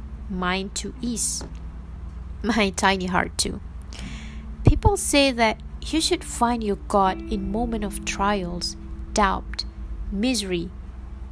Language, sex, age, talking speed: English, female, 20-39, 110 wpm